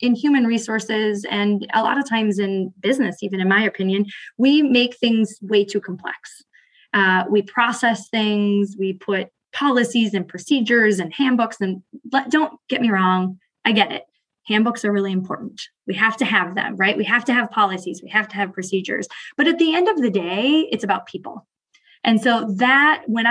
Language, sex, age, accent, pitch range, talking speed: English, female, 20-39, American, 195-235 Hz, 190 wpm